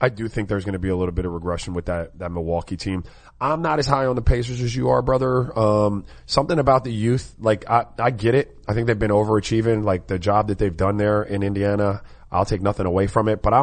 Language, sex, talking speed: English, male, 265 wpm